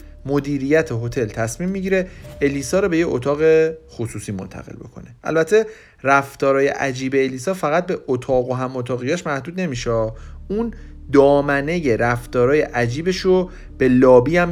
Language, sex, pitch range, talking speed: Persian, male, 115-160 Hz, 130 wpm